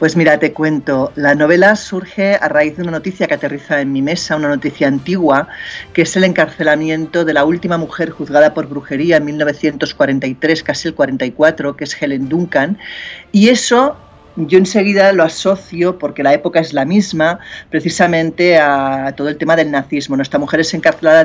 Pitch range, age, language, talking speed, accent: 145-175 Hz, 40-59, Spanish, 180 wpm, Spanish